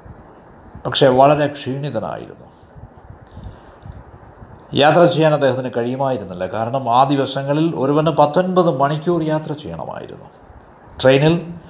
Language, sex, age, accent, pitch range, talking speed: Malayalam, male, 60-79, native, 130-170 Hz, 80 wpm